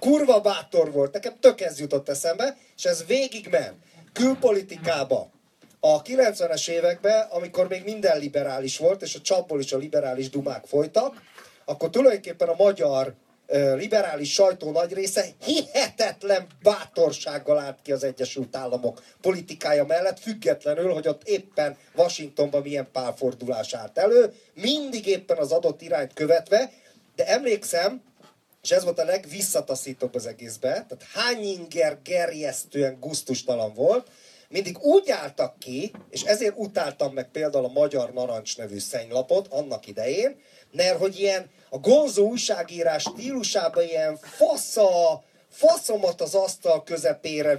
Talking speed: 130 wpm